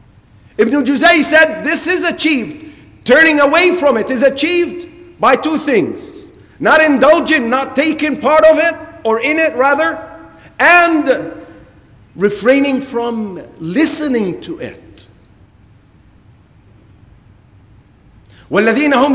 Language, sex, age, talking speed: English, male, 50-69, 95 wpm